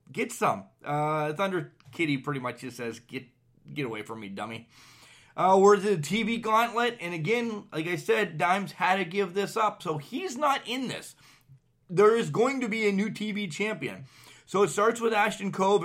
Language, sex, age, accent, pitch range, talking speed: English, male, 30-49, American, 150-205 Hz, 195 wpm